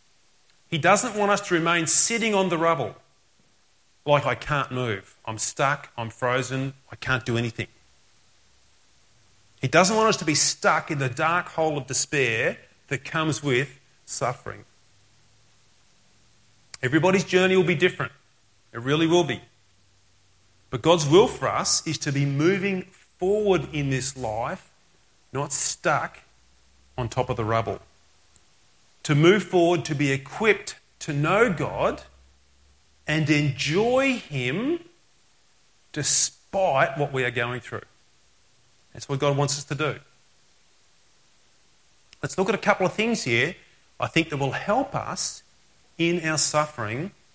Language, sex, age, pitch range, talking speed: English, male, 30-49, 115-170 Hz, 140 wpm